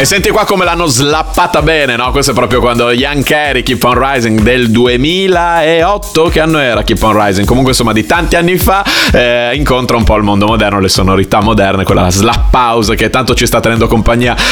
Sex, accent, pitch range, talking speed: male, native, 110-140 Hz, 210 wpm